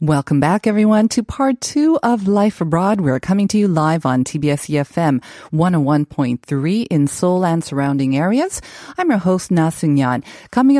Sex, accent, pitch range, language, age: female, American, 155-230 Hz, Korean, 40-59